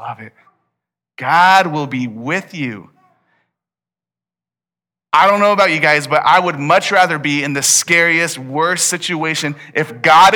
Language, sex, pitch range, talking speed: English, male, 115-165 Hz, 150 wpm